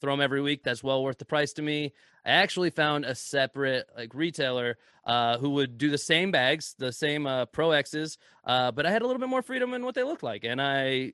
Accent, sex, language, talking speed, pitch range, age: American, male, English, 250 wpm, 130-155 Hz, 20-39